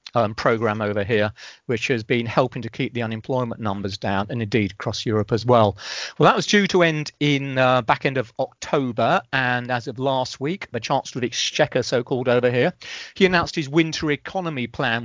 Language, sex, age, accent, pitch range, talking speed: English, male, 40-59, British, 115-140 Hz, 200 wpm